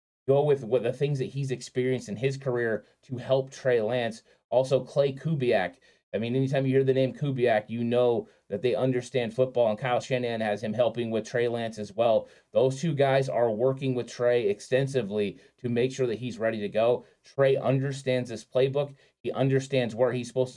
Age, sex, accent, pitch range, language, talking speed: 20-39, male, American, 115-130 Hz, English, 200 wpm